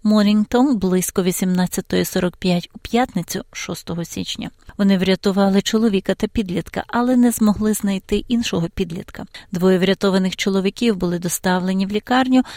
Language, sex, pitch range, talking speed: Ukrainian, female, 175-215 Hz, 120 wpm